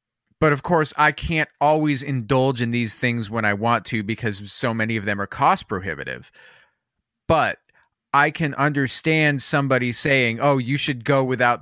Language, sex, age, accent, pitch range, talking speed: English, male, 30-49, American, 115-145 Hz, 170 wpm